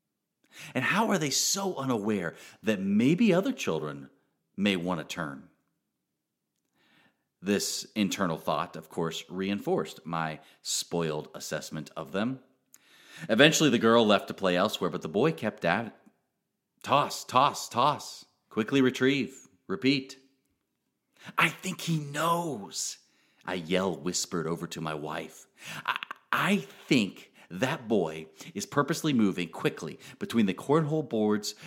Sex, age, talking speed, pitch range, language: male, 40-59, 130 wpm, 85-130 Hz, English